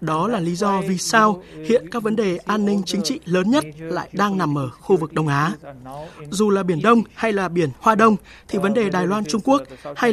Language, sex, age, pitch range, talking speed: Vietnamese, male, 20-39, 170-220 Hz, 235 wpm